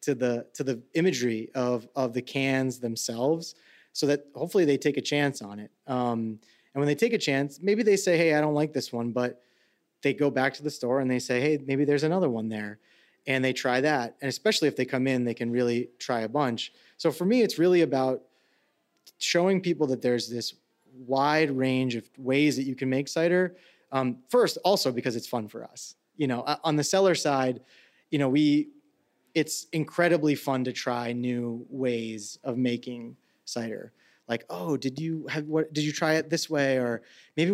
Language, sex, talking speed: English, male, 205 wpm